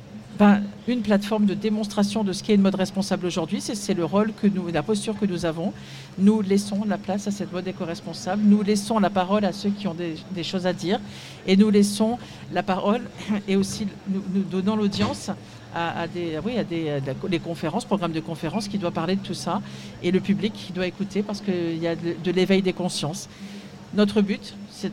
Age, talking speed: 50-69, 225 wpm